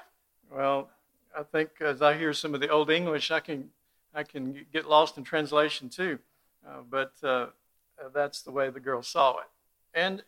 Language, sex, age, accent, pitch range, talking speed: English, male, 50-69, American, 140-170 Hz, 180 wpm